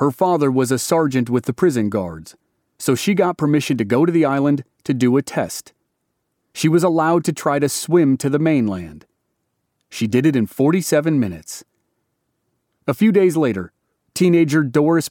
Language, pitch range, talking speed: English, 125-155 Hz, 175 wpm